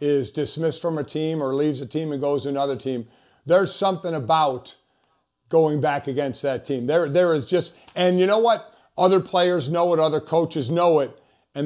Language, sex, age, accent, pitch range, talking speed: English, male, 40-59, American, 140-175 Hz, 200 wpm